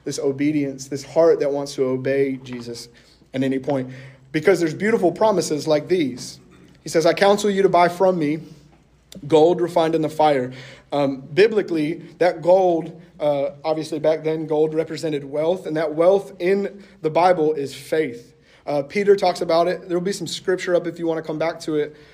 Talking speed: 185 wpm